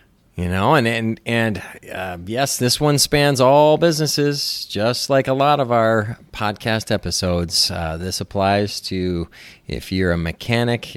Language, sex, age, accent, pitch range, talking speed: English, male, 40-59, American, 95-125 Hz, 150 wpm